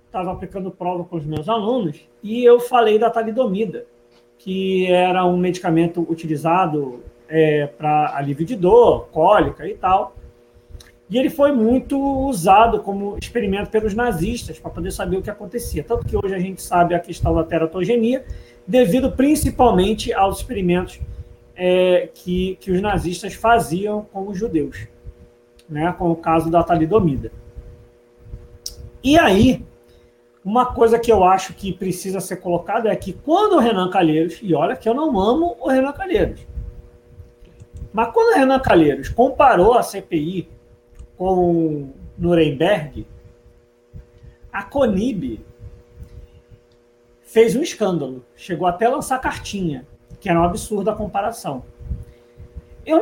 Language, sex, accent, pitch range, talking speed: Portuguese, male, Brazilian, 140-215 Hz, 135 wpm